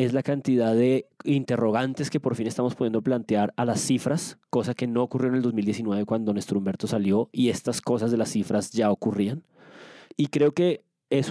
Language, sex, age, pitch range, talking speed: Spanish, male, 30-49, 110-130 Hz, 195 wpm